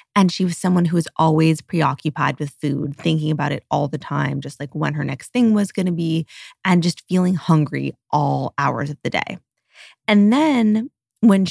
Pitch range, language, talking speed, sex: 150-185 Hz, English, 200 wpm, female